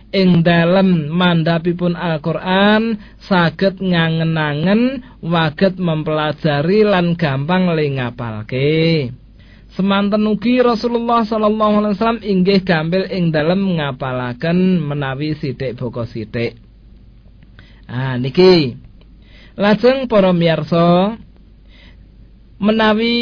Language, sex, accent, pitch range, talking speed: Indonesian, male, native, 155-195 Hz, 80 wpm